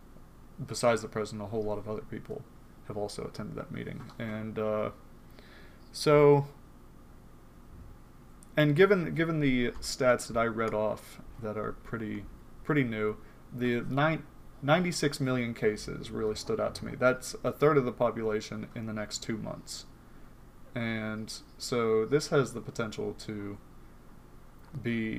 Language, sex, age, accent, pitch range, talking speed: English, male, 30-49, American, 105-125 Hz, 145 wpm